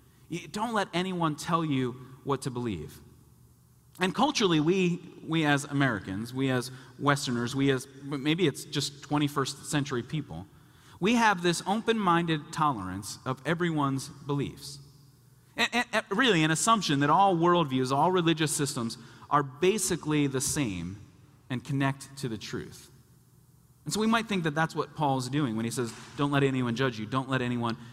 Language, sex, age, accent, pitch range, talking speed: English, male, 30-49, American, 130-170 Hz, 155 wpm